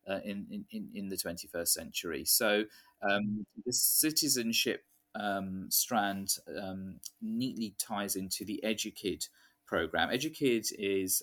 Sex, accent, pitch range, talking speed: male, British, 90-115 Hz, 120 wpm